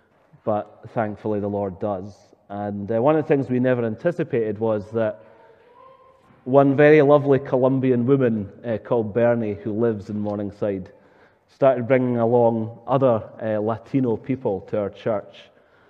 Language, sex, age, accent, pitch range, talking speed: English, male, 30-49, British, 105-130 Hz, 145 wpm